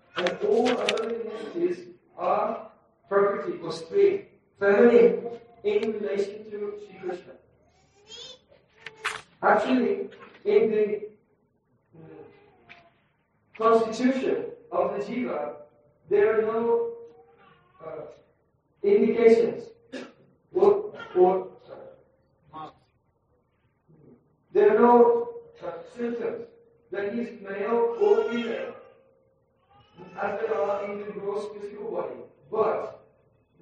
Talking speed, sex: 85 wpm, male